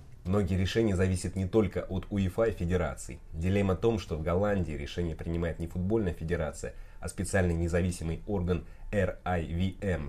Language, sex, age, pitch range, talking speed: Russian, male, 20-39, 85-95 Hz, 150 wpm